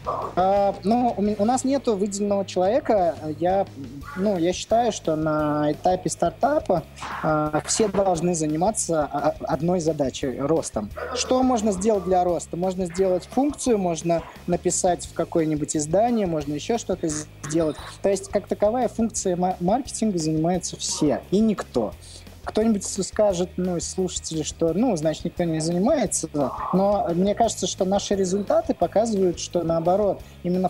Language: Russian